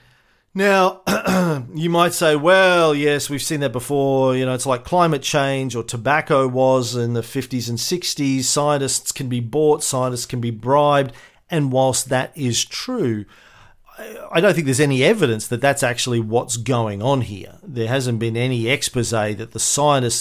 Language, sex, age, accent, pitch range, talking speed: English, male, 40-59, Australian, 120-155 Hz, 170 wpm